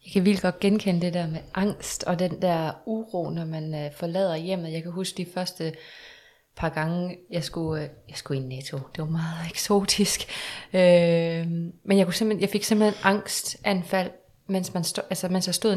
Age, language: 20-39, Danish